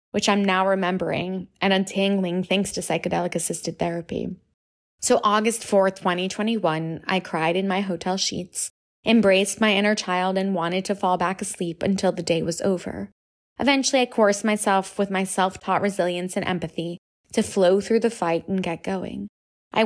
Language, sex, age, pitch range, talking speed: English, female, 20-39, 180-205 Hz, 165 wpm